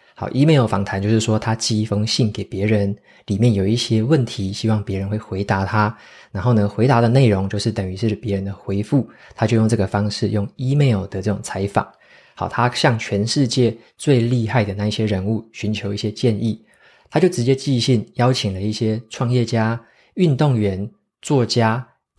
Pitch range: 105-125 Hz